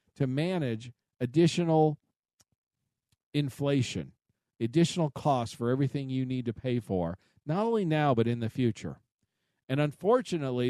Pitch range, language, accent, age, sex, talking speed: 125-165 Hz, English, American, 50-69, male, 125 wpm